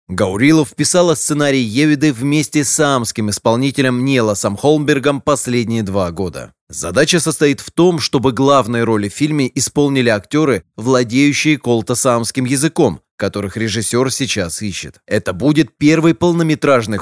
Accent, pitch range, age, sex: native, 110-140 Hz, 30-49, male